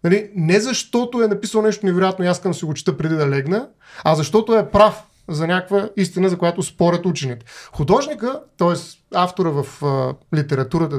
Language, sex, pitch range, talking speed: Bulgarian, male, 165-225 Hz, 180 wpm